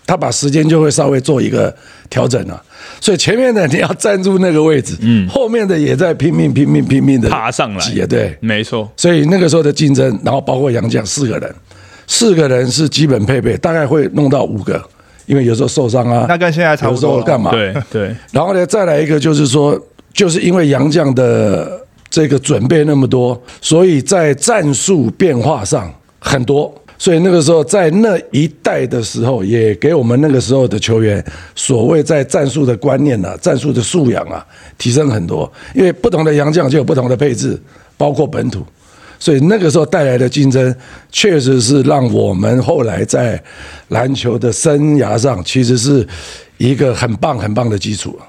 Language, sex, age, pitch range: Chinese, male, 50-69, 125-160 Hz